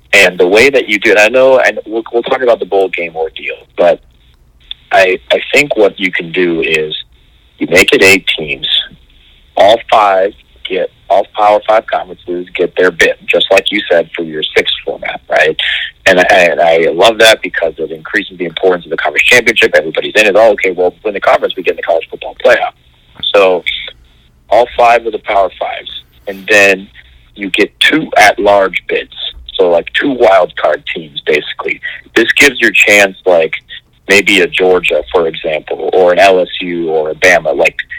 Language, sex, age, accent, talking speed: English, male, 40-59, American, 190 wpm